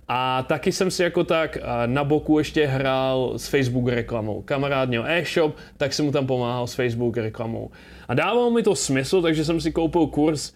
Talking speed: 195 wpm